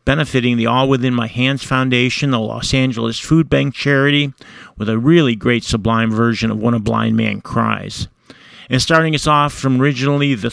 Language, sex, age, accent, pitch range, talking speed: English, male, 50-69, American, 115-135 Hz, 180 wpm